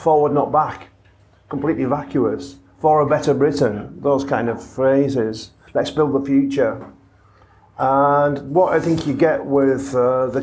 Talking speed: 150 wpm